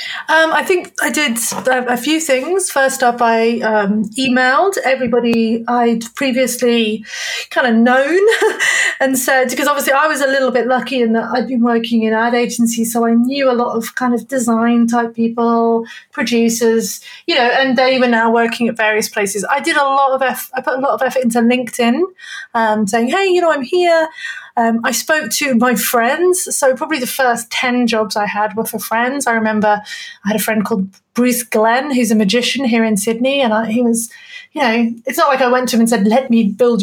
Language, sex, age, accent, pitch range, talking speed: English, female, 30-49, British, 225-265 Hz, 210 wpm